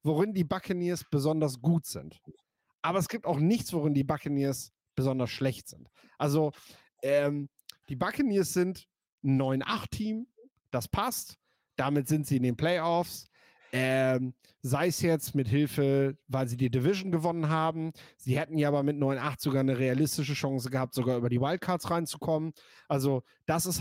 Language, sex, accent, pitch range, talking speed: German, male, German, 135-160 Hz, 160 wpm